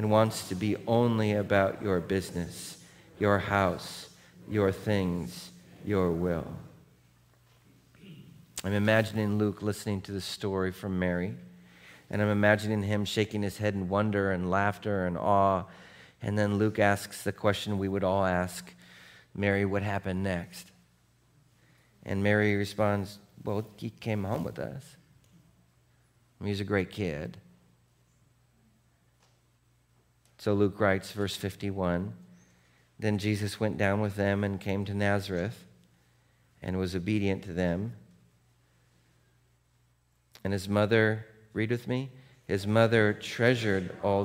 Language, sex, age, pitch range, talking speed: English, male, 40-59, 85-105 Hz, 125 wpm